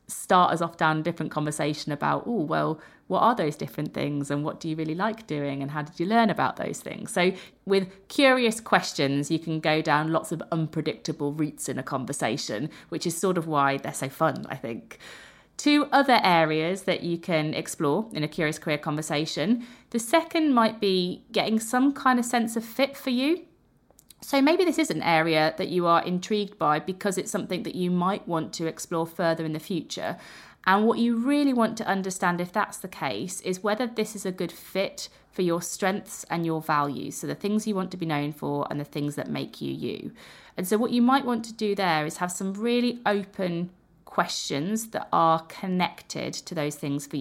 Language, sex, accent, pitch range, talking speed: English, female, British, 155-205 Hz, 210 wpm